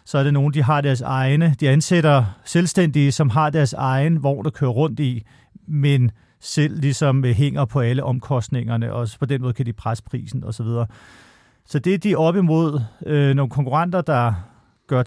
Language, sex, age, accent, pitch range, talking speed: Danish, male, 40-59, native, 125-160 Hz, 195 wpm